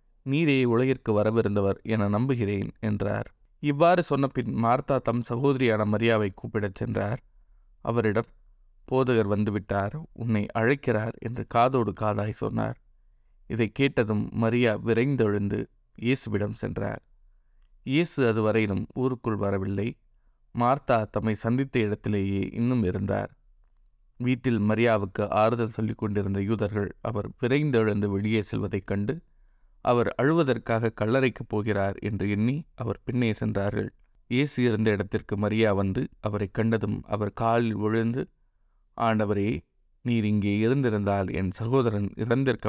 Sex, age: male, 20-39